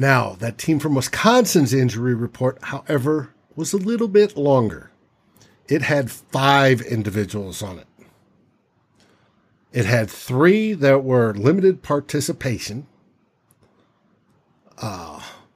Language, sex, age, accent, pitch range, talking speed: English, male, 50-69, American, 115-145 Hz, 105 wpm